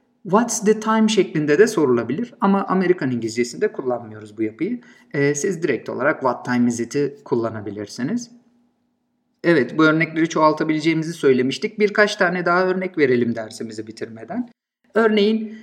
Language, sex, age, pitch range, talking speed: Turkish, male, 50-69, 140-215 Hz, 130 wpm